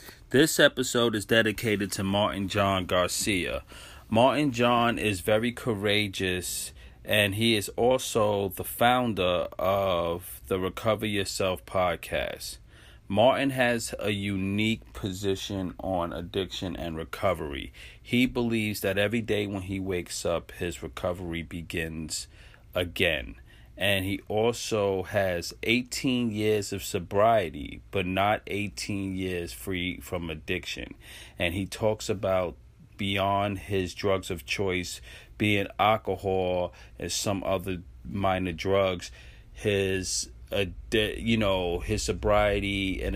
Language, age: English, 30-49